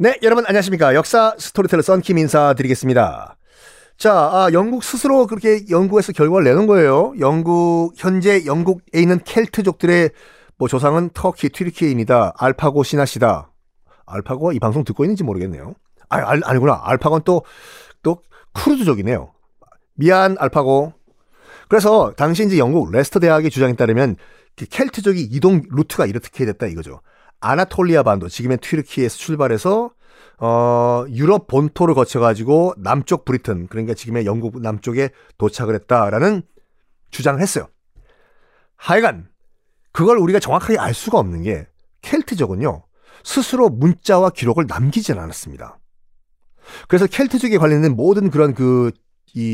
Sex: male